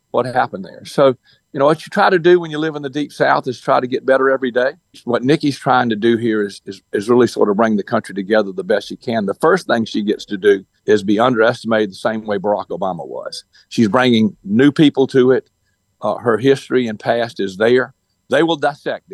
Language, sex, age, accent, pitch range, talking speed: English, male, 50-69, American, 110-140 Hz, 240 wpm